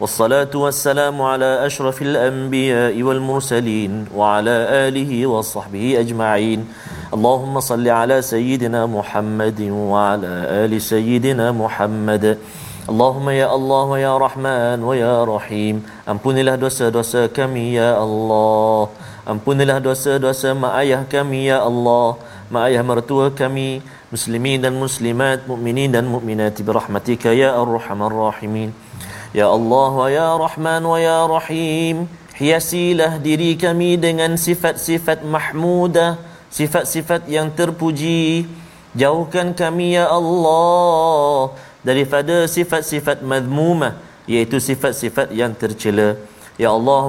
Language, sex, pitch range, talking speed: Malayalam, male, 115-165 Hz, 50 wpm